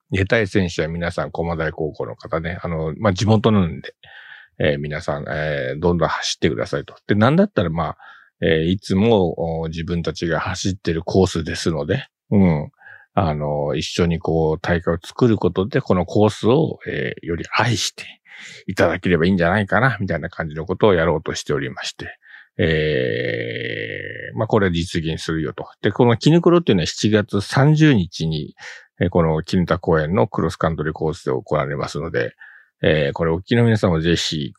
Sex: male